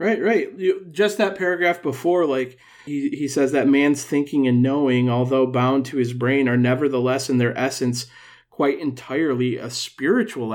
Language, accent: English, American